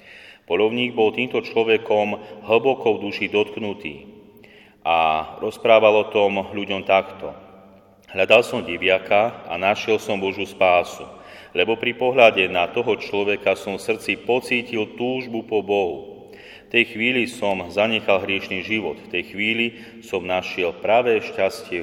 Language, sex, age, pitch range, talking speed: Slovak, male, 30-49, 95-110 Hz, 135 wpm